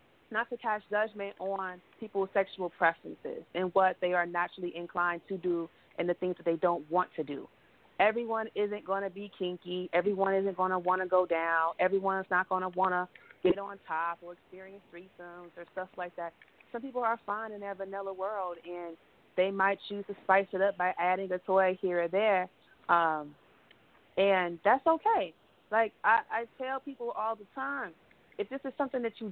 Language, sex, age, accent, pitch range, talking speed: English, female, 30-49, American, 175-205 Hz, 195 wpm